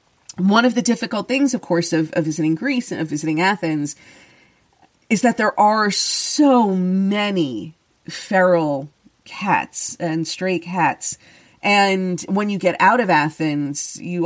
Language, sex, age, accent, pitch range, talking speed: English, female, 40-59, American, 160-195 Hz, 145 wpm